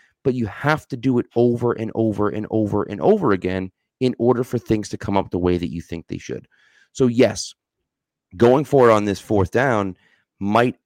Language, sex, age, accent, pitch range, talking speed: English, male, 30-49, American, 90-110 Hz, 210 wpm